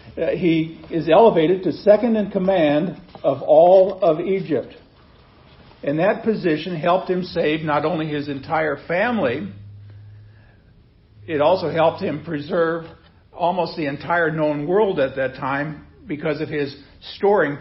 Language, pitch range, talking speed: English, 140-175 Hz, 135 wpm